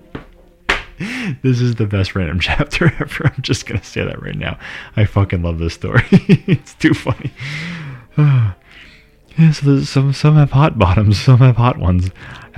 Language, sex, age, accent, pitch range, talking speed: English, male, 30-49, American, 90-115 Hz, 165 wpm